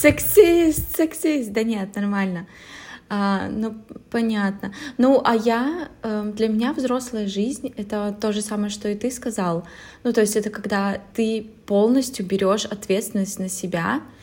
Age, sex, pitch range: 20-39, female, 185-215 Hz